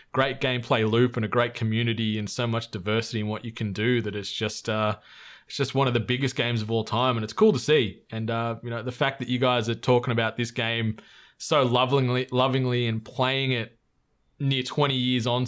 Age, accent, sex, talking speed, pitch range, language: 20-39, Australian, male, 230 wpm, 115-140 Hz, English